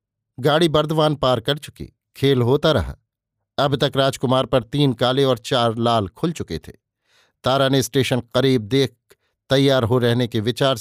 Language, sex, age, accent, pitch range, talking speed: Hindi, male, 50-69, native, 120-150 Hz, 165 wpm